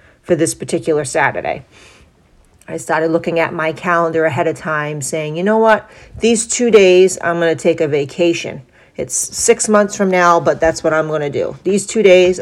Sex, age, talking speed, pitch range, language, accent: female, 40-59, 190 wpm, 155-185 Hz, English, American